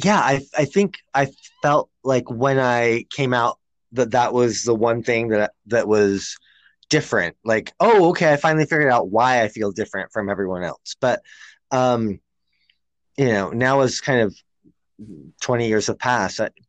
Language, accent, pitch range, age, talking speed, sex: English, American, 100-130 Hz, 20-39, 170 wpm, male